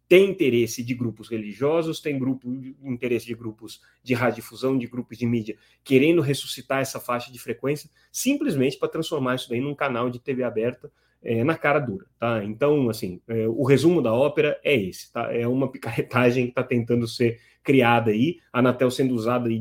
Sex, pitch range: male, 115-135 Hz